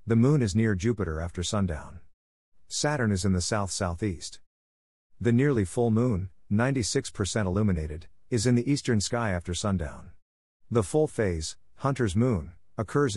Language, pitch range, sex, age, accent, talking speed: English, 85-115 Hz, male, 50-69, American, 140 wpm